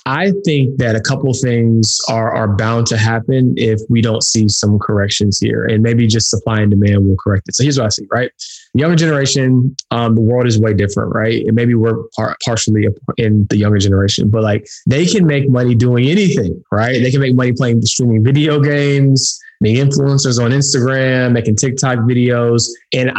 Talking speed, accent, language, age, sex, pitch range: 200 wpm, American, English, 20-39, male, 110-140 Hz